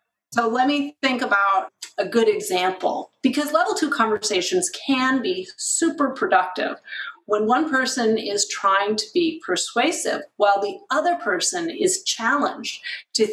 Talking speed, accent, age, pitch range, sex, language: 140 wpm, American, 40-59, 205-320 Hz, female, English